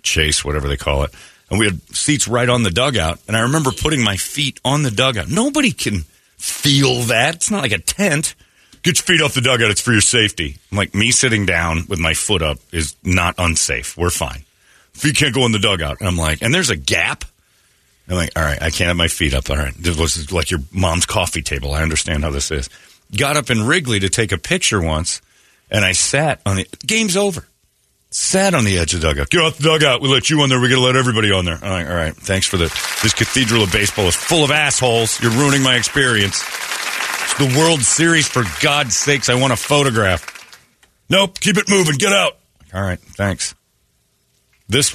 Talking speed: 230 wpm